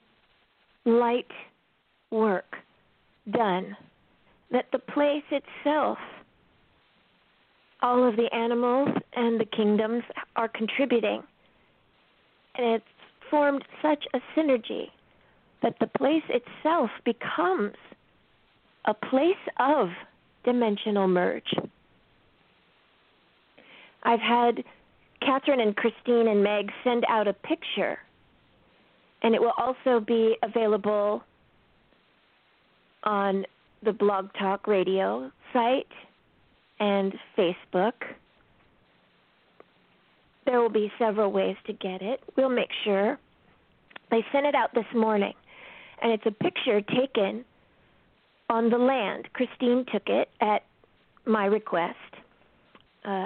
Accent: American